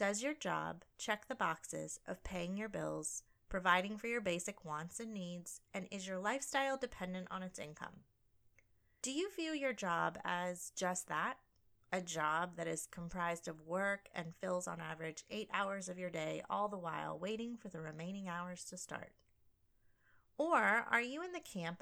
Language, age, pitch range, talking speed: English, 30-49, 165-240 Hz, 180 wpm